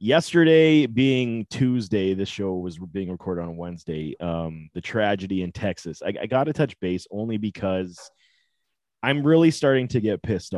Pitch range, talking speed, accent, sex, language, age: 100-135 Hz, 165 wpm, American, male, English, 30-49